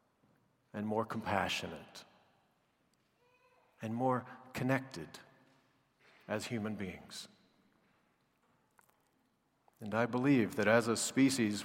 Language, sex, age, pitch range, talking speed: English, male, 50-69, 110-135 Hz, 80 wpm